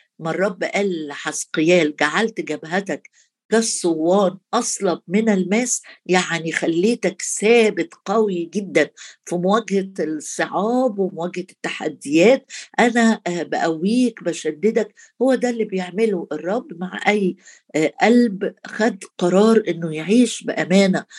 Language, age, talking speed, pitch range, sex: Arabic, 50-69, 100 wpm, 175-225 Hz, female